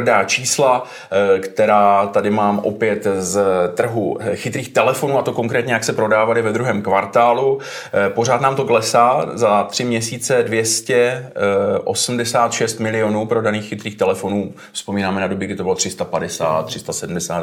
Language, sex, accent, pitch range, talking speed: Czech, male, native, 105-135 Hz, 130 wpm